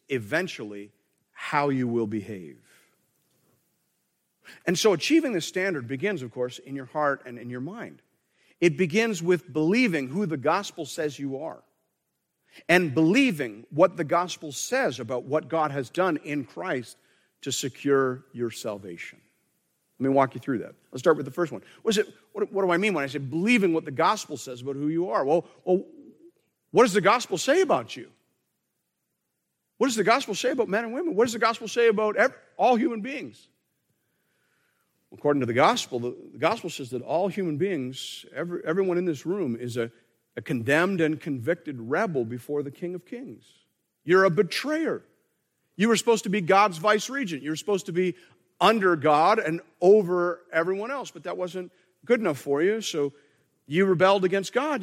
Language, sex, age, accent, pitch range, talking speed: English, male, 50-69, American, 140-205 Hz, 185 wpm